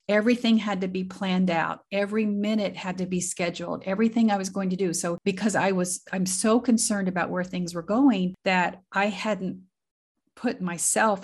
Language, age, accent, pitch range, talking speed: English, 50-69, American, 170-210 Hz, 185 wpm